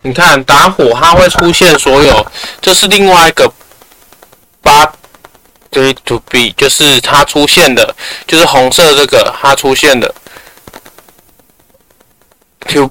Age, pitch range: 20-39, 135-200 Hz